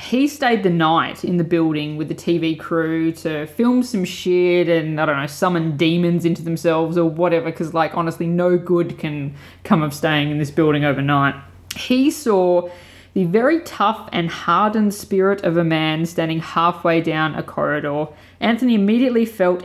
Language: English